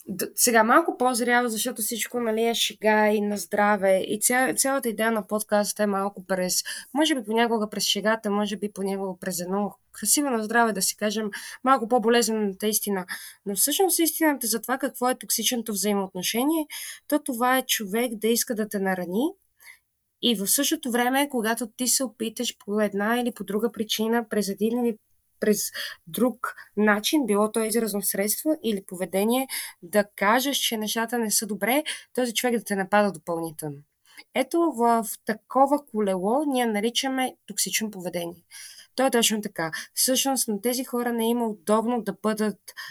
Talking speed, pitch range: 165 wpm, 205-245 Hz